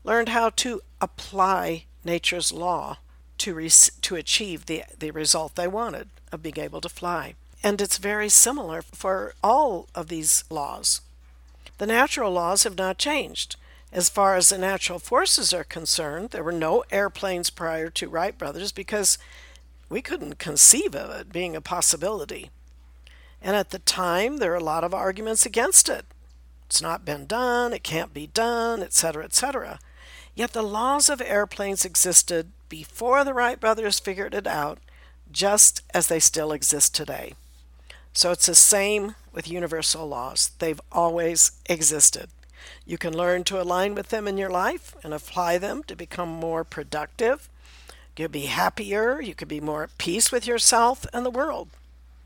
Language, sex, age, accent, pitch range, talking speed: English, female, 60-79, American, 150-205 Hz, 165 wpm